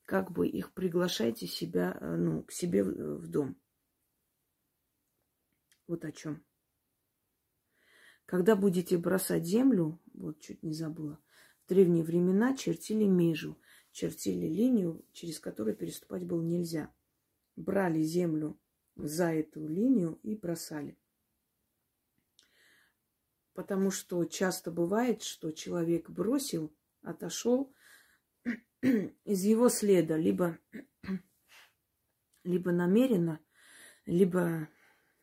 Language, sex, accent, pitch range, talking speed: Russian, female, native, 160-200 Hz, 90 wpm